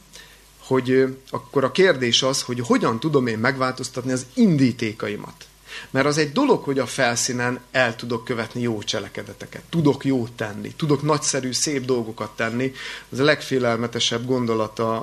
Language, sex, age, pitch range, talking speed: Hungarian, male, 30-49, 115-140 Hz, 145 wpm